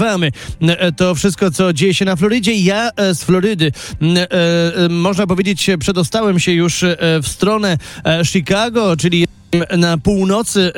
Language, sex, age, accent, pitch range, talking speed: Polish, male, 30-49, native, 170-215 Hz, 115 wpm